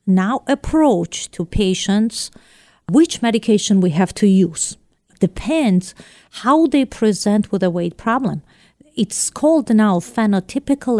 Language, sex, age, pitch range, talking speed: English, female, 40-59, 180-225 Hz, 120 wpm